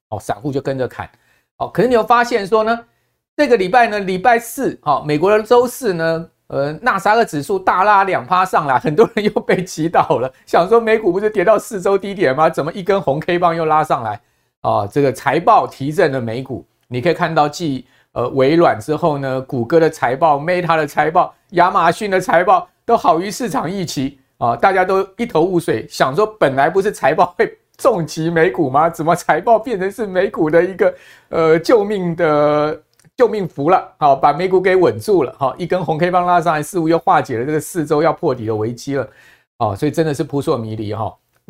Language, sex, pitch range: Chinese, male, 130-190 Hz